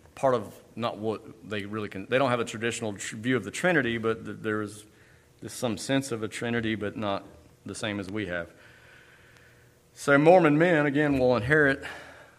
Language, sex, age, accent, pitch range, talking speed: English, male, 40-59, American, 100-120 Hz, 180 wpm